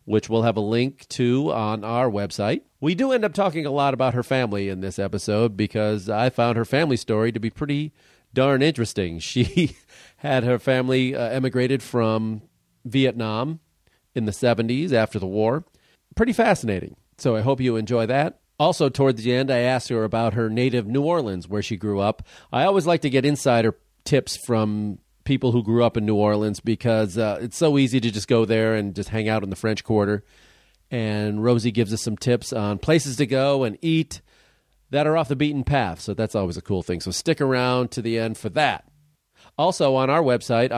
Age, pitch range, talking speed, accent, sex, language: 40-59, 110-135 Hz, 205 wpm, American, male, English